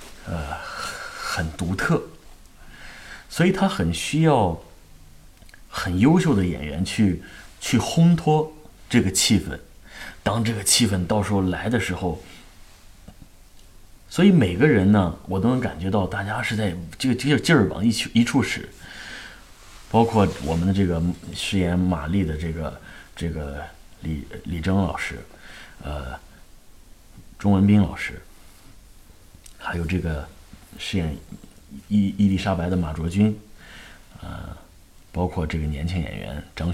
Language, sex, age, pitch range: Chinese, male, 30-49, 80-100 Hz